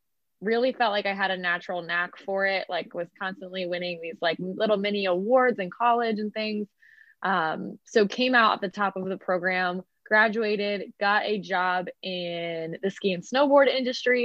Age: 20-39